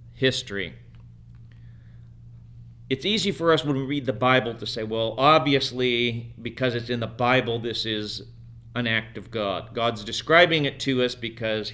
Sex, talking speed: male, 160 wpm